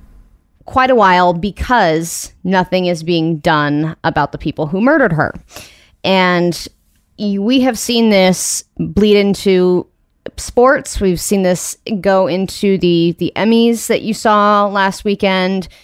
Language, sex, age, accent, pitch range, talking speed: English, female, 30-49, American, 165-205 Hz, 135 wpm